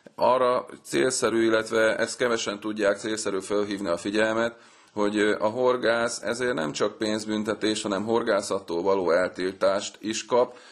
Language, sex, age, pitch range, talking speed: Hungarian, male, 30-49, 100-115 Hz, 130 wpm